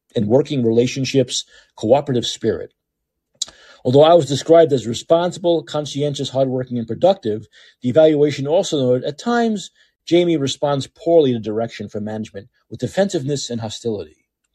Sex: male